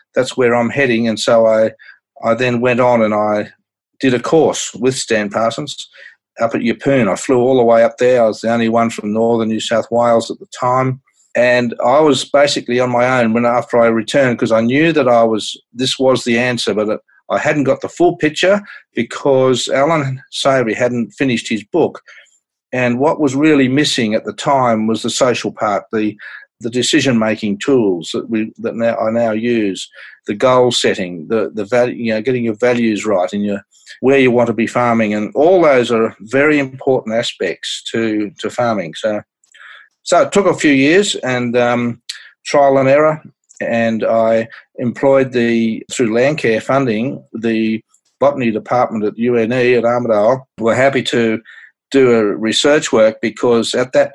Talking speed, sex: 185 wpm, male